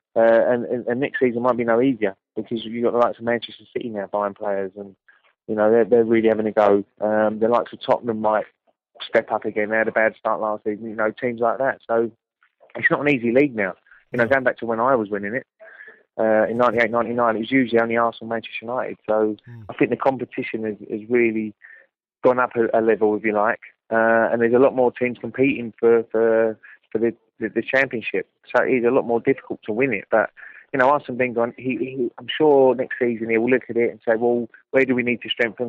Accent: British